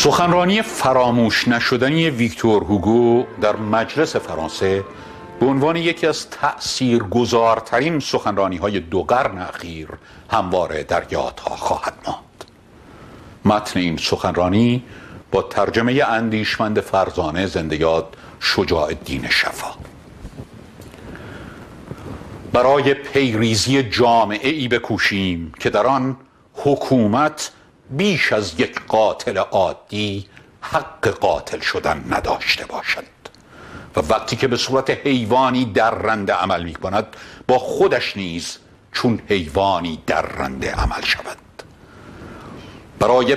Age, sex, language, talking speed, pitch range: 60-79, male, Persian, 100 wpm, 100-130 Hz